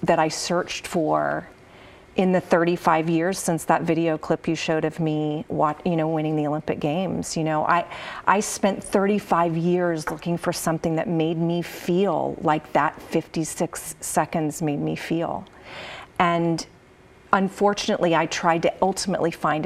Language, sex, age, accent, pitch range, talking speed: English, female, 40-59, American, 165-190 Hz, 155 wpm